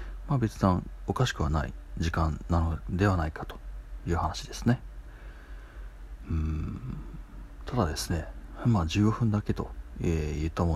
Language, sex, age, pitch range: Japanese, male, 40-59, 70-105 Hz